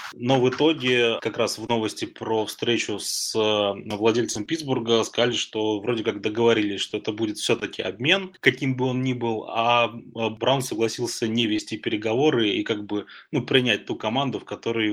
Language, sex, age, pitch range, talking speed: Russian, male, 20-39, 110-125 Hz, 170 wpm